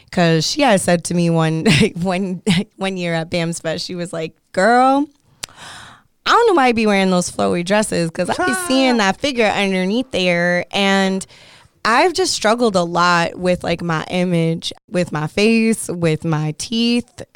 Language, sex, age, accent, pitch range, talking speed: English, female, 20-39, American, 165-190 Hz, 180 wpm